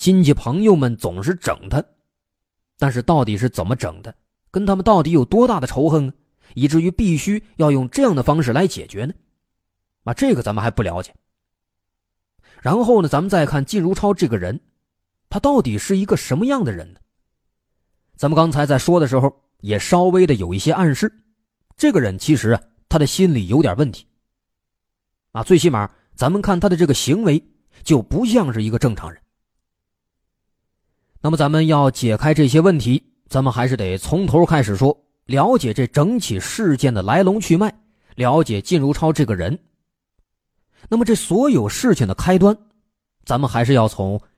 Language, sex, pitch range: Chinese, male, 100-170 Hz